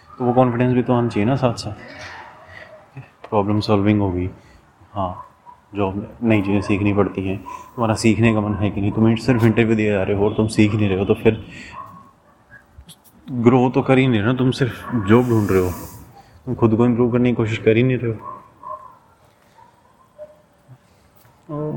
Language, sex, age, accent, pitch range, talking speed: Hindi, male, 30-49, native, 105-130 Hz, 185 wpm